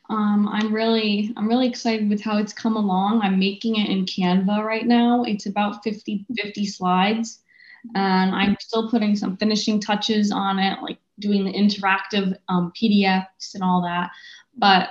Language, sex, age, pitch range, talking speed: English, female, 10-29, 200-230 Hz, 170 wpm